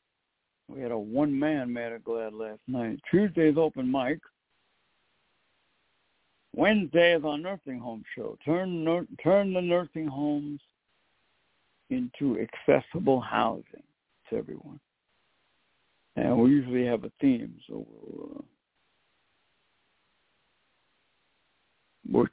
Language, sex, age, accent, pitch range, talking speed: English, male, 60-79, American, 130-175 Hz, 95 wpm